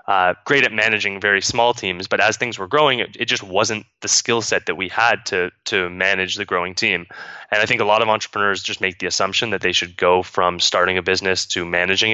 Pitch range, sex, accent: 95-105 Hz, male, American